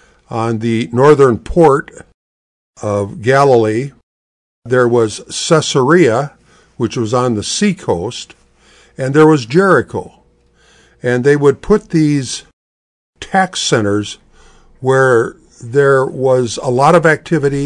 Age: 50-69